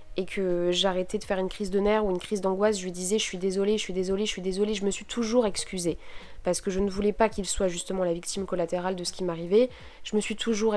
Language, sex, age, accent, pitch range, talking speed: French, female, 20-39, French, 175-210 Hz, 280 wpm